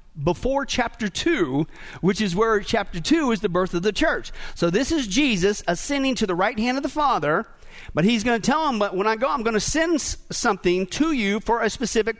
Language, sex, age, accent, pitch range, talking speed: English, male, 50-69, American, 180-240 Hz, 225 wpm